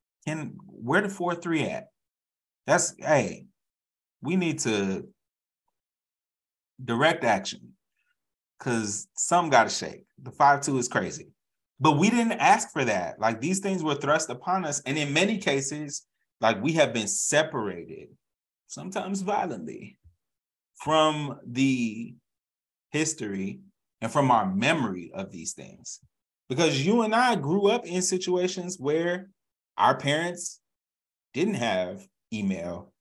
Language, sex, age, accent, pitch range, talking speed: English, male, 30-49, American, 115-175 Hz, 125 wpm